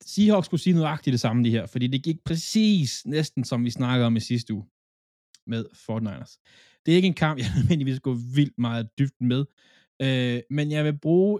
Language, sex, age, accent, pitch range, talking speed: Danish, male, 20-39, native, 110-150 Hz, 205 wpm